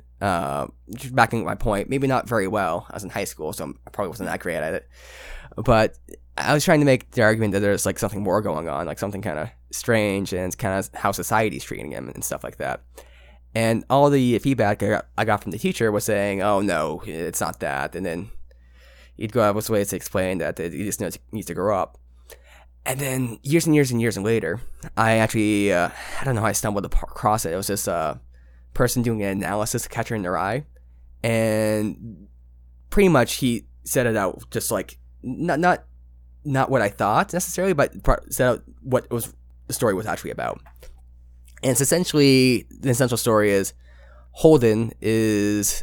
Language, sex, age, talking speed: English, male, 10-29, 200 wpm